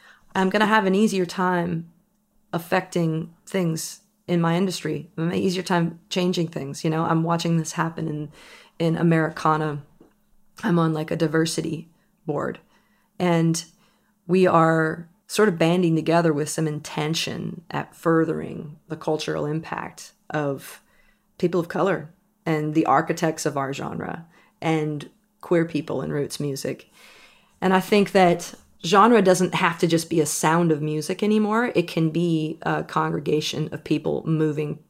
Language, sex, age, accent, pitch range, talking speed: English, female, 30-49, American, 160-185 Hz, 150 wpm